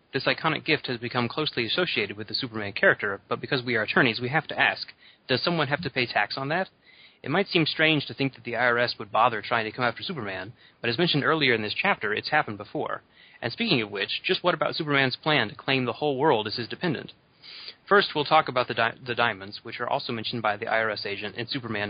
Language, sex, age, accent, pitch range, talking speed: English, male, 30-49, American, 115-145 Hz, 240 wpm